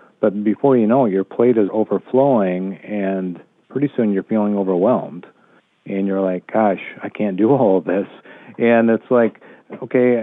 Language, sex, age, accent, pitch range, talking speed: English, male, 40-59, American, 95-115 Hz, 170 wpm